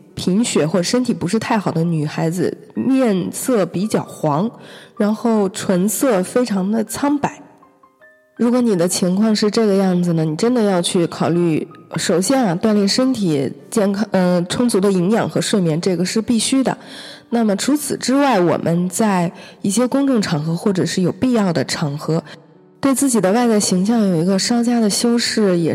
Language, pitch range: Chinese, 170-225 Hz